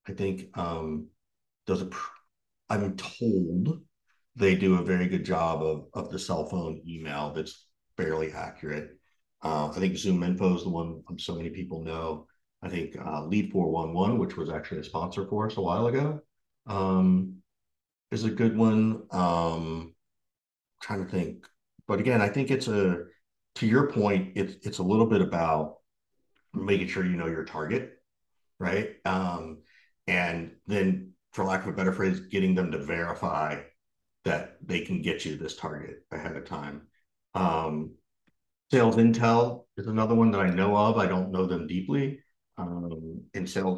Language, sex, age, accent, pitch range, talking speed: English, male, 50-69, American, 85-110 Hz, 170 wpm